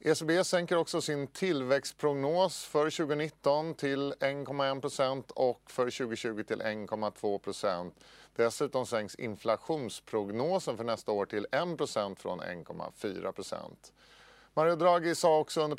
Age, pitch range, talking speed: 40-59, 110-150 Hz, 115 wpm